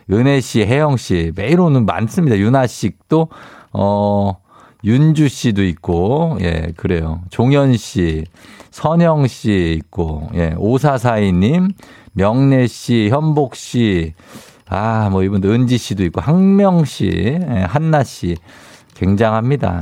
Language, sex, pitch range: Korean, male, 95-150 Hz